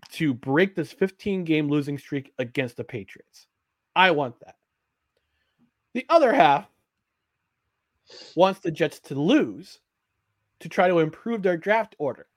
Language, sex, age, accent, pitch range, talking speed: English, male, 30-49, American, 145-205 Hz, 130 wpm